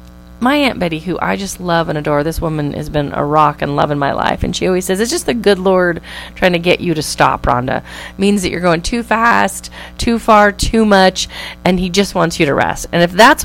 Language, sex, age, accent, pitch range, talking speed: English, female, 30-49, American, 160-230 Hz, 250 wpm